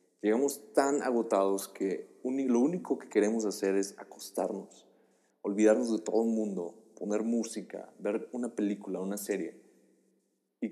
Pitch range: 105-140 Hz